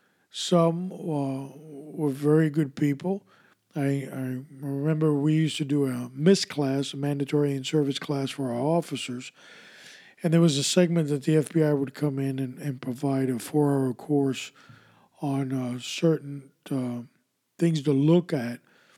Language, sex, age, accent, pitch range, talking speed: English, male, 50-69, American, 135-155 Hz, 150 wpm